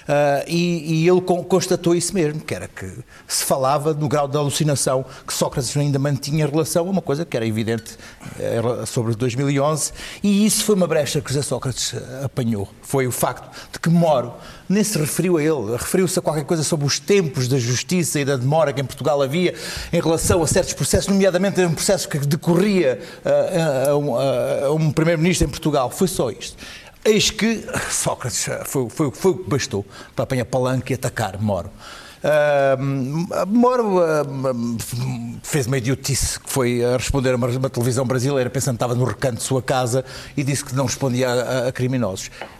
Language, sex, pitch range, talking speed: Portuguese, male, 120-165 Hz, 190 wpm